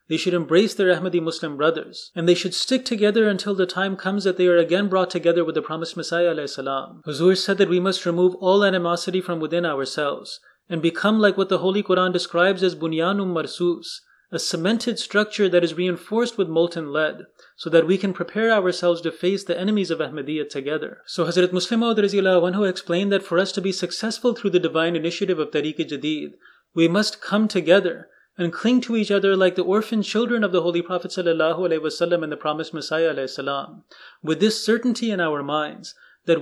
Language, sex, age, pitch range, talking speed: English, male, 30-49, 165-195 Hz, 200 wpm